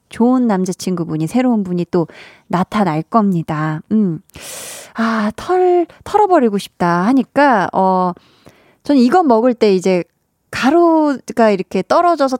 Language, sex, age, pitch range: Korean, female, 20-39, 190-270 Hz